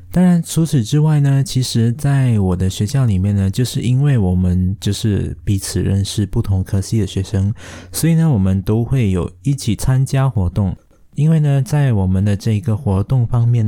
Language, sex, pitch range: Chinese, male, 95-130 Hz